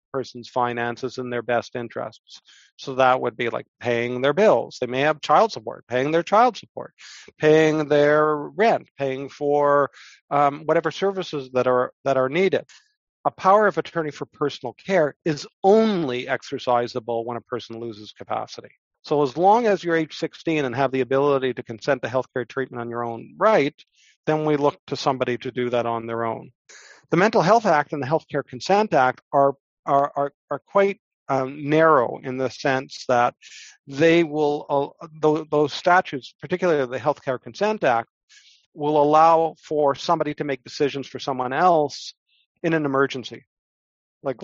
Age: 50-69